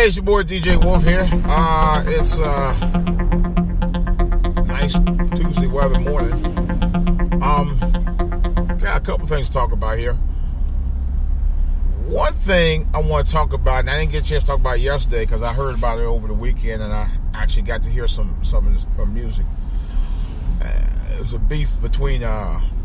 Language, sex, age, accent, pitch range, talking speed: English, male, 30-49, American, 75-110 Hz, 170 wpm